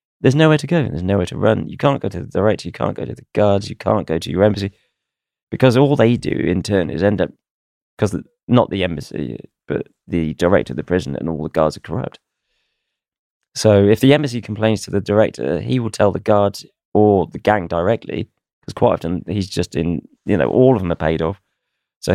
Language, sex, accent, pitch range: English, male, British, 80-105 Hz